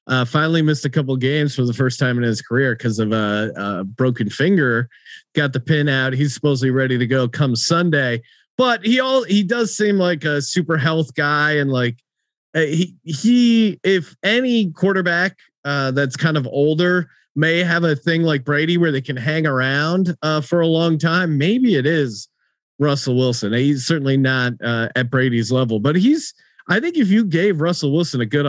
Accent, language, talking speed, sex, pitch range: American, English, 200 wpm, male, 125-175 Hz